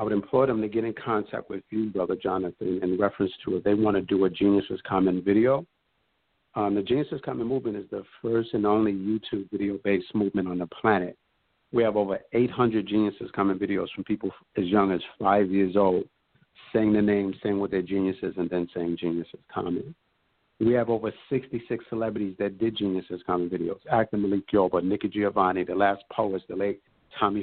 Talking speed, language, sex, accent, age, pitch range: 195 wpm, English, male, American, 50-69, 95-105 Hz